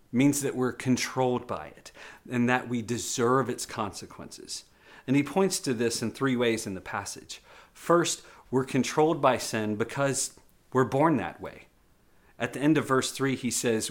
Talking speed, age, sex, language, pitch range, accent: 175 wpm, 40-59, male, English, 110-140 Hz, American